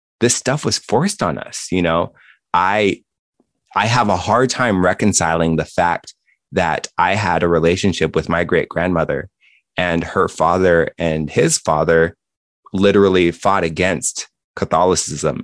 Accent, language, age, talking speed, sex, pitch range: American, English, 20-39, 135 wpm, male, 85-125 Hz